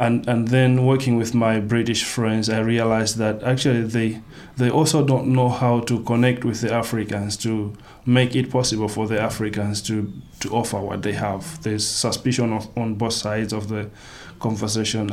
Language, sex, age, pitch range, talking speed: English, male, 20-39, 105-120 Hz, 180 wpm